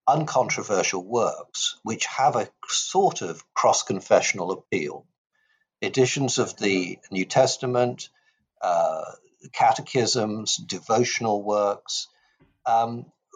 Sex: male